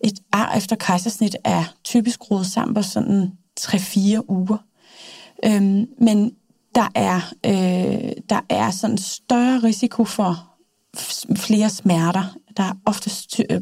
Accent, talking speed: native, 130 wpm